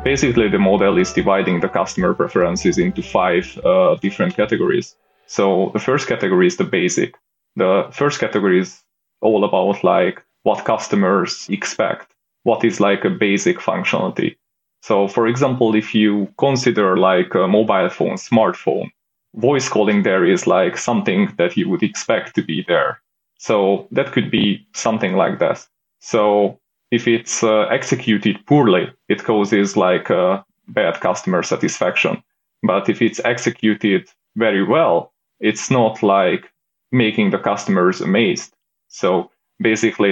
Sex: male